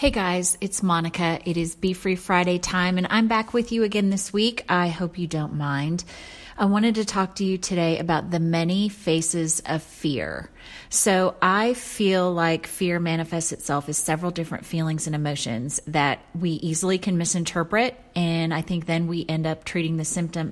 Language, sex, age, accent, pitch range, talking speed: English, female, 30-49, American, 160-190 Hz, 185 wpm